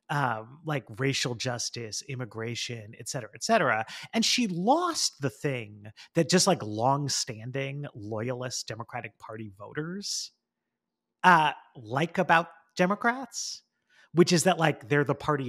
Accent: American